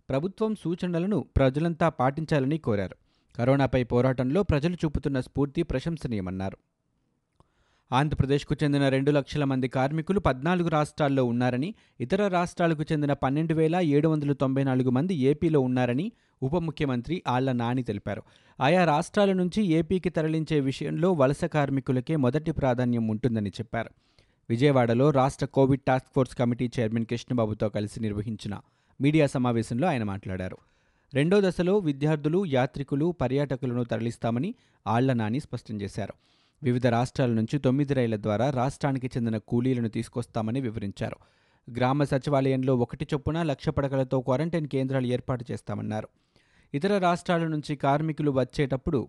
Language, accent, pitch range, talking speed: Telugu, native, 120-150 Hz, 115 wpm